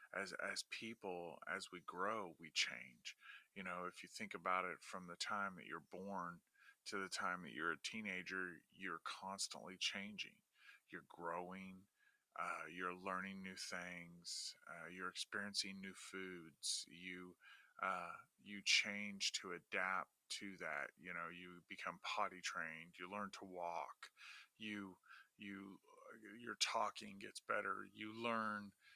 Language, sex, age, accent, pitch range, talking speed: English, male, 30-49, American, 90-100 Hz, 145 wpm